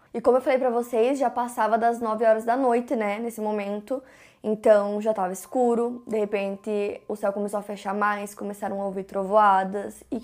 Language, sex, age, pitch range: Portuguese, female, 20-39, 205-240 Hz